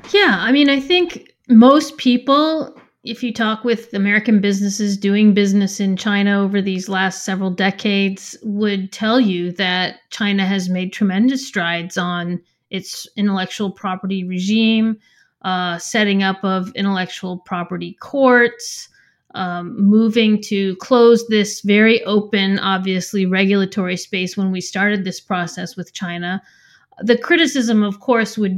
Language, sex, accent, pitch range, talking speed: English, female, American, 190-230 Hz, 135 wpm